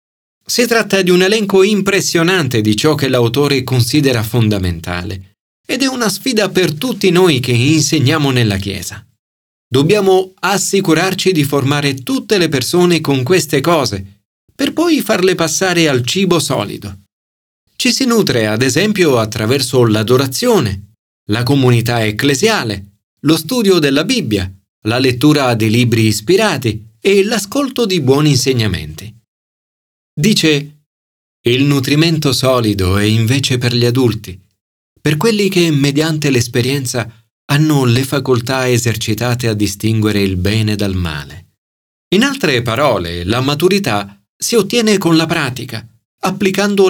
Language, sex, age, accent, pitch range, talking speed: Italian, male, 40-59, native, 110-170 Hz, 125 wpm